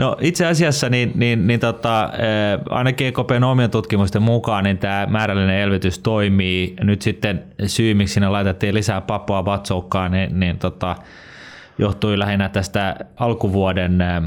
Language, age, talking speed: Finnish, 20-39, 145 wpm